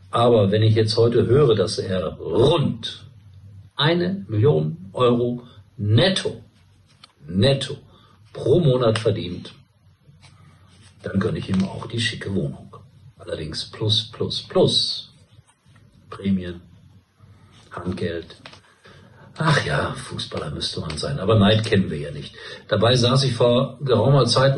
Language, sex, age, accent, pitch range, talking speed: German, male, 50-69, German, 100-120 Hz, 120 wpm